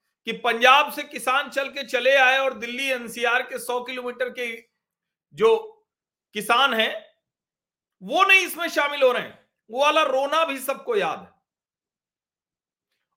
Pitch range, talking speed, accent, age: 225-280 Hz, 145 wpm, native, 40-59